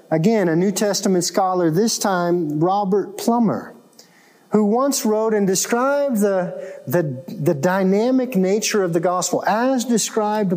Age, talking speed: 40-59, 135 wpm